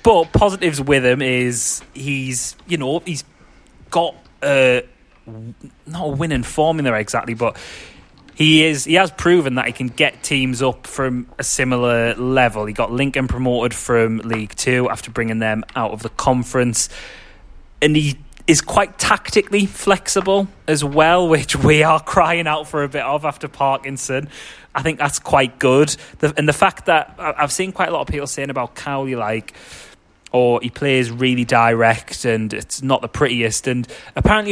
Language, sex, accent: English, male, British